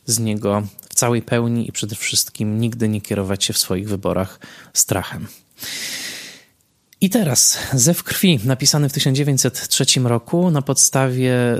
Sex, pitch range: male, 105-120 Hz